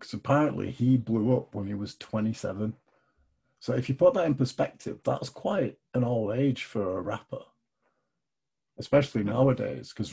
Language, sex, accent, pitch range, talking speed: English, male, British, 105-130 Hz, 160 wpm